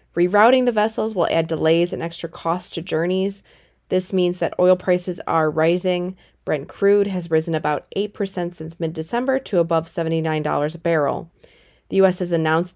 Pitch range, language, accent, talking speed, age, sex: 165-195 Hz, English, American, 165 wpm, 20-39, female